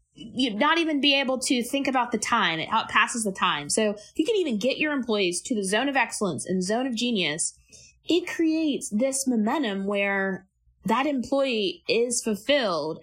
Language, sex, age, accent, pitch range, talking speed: English, female, 20-39, American, 195-270 Hz, 185 wpm